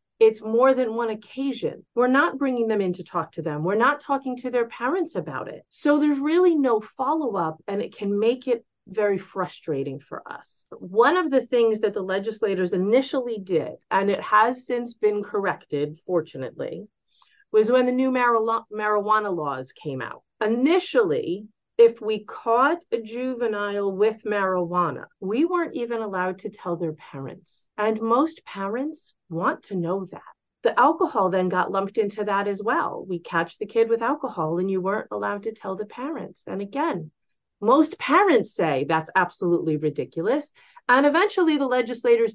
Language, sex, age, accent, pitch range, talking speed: English, female, 40-59, American, 190-265 Hz, 165 wpm